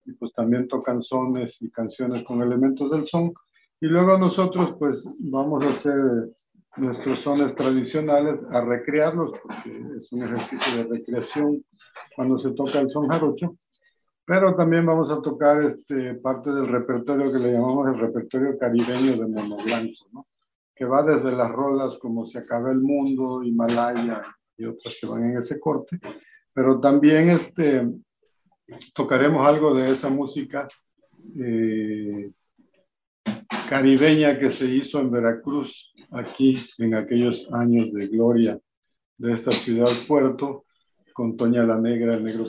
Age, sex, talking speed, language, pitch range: 50-69, male, 145 wpm, Spanish, 120-145 Hz